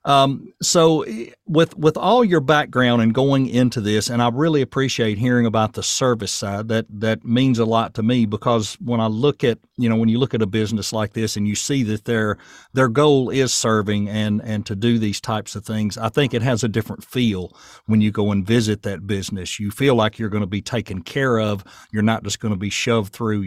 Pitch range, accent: 105-130 Hz, American